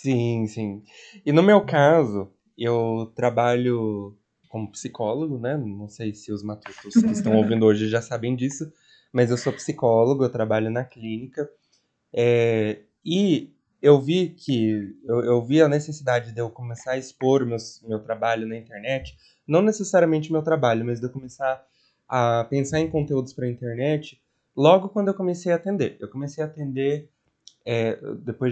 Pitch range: 120-155 Hz